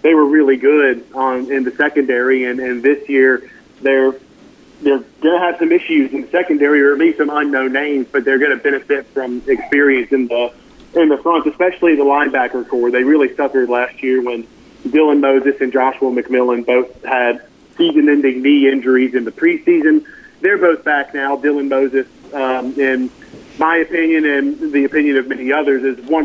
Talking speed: 180 wpm